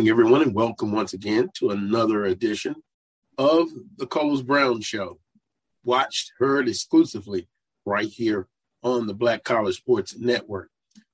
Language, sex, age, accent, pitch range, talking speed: English, male, 40-59, American, 120-180 Hz, 130 wpm